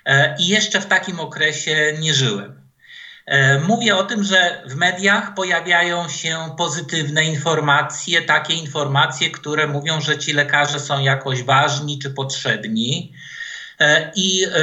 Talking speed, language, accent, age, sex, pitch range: 125 wpm, Polish, native, 50-69, male, 150-190 Hz